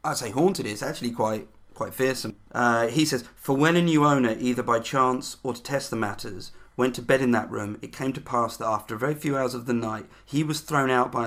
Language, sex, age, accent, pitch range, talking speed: English, male, 40-59, British, 105-130 Hz, 260 wpm